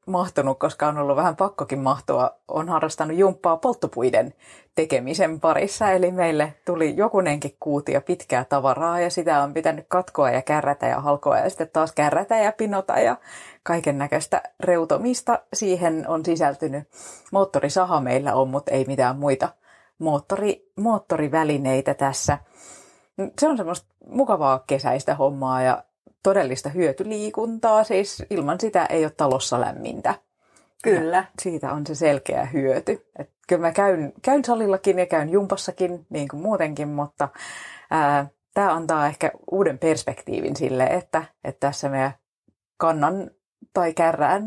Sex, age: female, 30-49